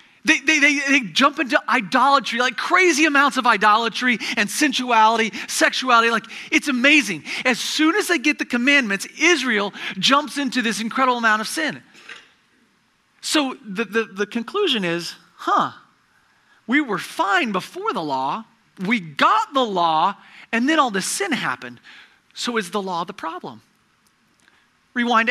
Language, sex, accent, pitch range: English, male, American, 215-280 Hz